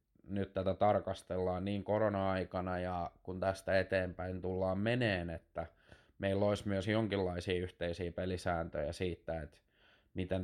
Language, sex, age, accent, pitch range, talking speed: Finnish, male, 20-39, native, 90-100 Hz, 120 wpm